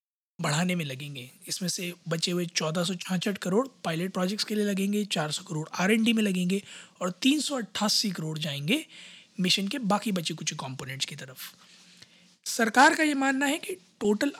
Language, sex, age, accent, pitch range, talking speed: Hindi, male, 20-39, native, 170-205 Hz, 180 wpm